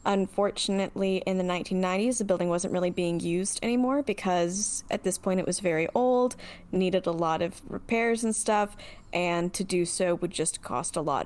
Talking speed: 185 wpm